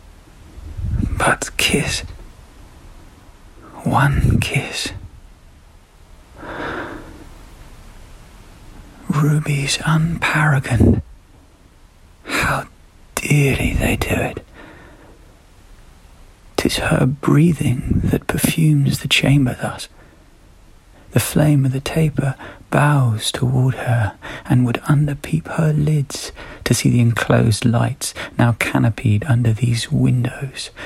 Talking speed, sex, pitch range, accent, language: 80 wpm, male, 90-135 Hz, British, English